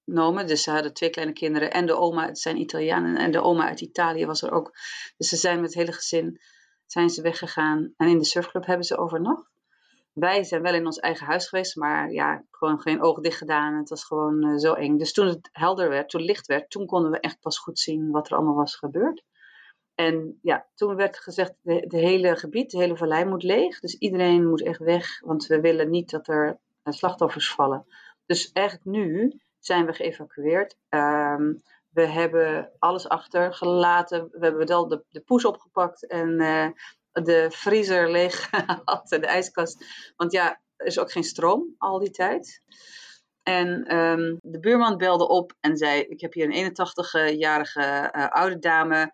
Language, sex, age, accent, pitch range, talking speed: Dutch, female, 40-59, Dutch, 155-180 Hz, 190 wpm